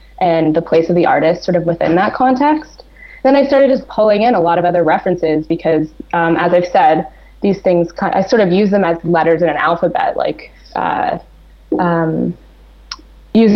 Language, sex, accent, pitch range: English, female, American, 170-220 Hz